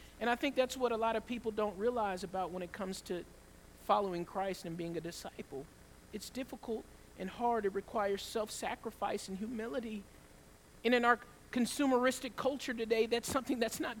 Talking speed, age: 175 wpm, 40-59